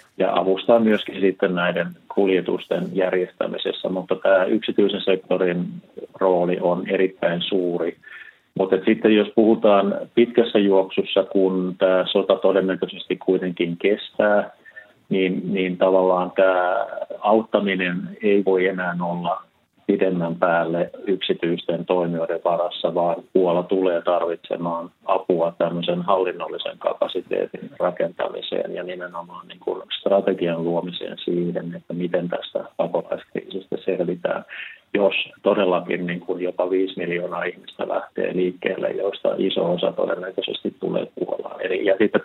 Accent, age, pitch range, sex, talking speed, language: native, 30-49, 90-100 Hz, male, 110 wpm, Finnish